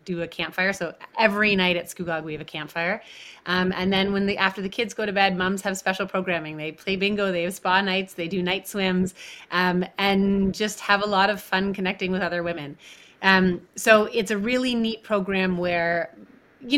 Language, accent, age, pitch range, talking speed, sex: English, American, 30-49, 180-220 Hz, 210 wpm, female